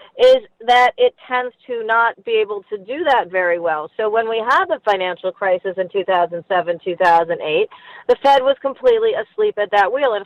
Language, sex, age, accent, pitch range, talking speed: English, female, 40-59, American, 190-285 Hz, 185 wpm